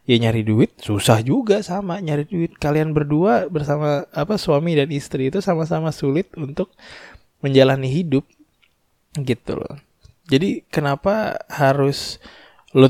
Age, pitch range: 20-39, 125-150 Hz